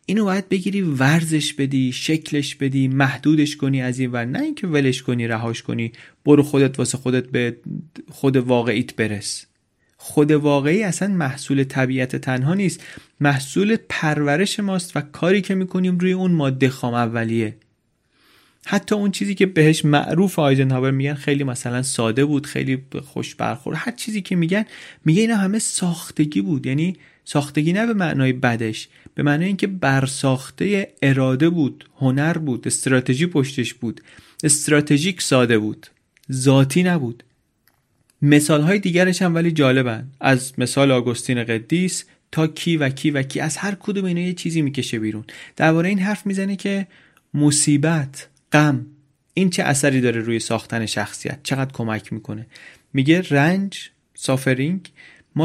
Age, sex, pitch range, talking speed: 30-49, male, 130-175 Hz, 145 wpm